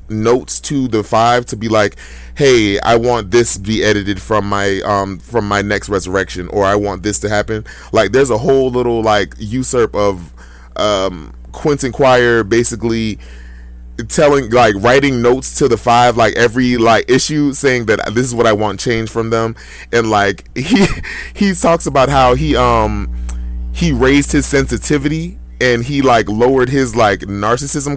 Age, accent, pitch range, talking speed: 20-39, American, 100-130 Hz, 170 wpm